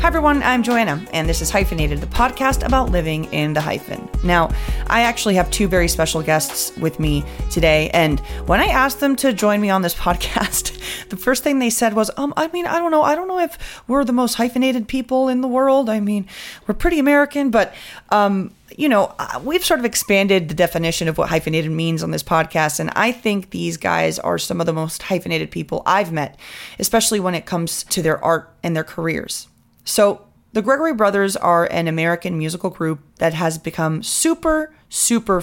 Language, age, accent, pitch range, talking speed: English, 30-49, American, 160-235 Hz, 205 wpm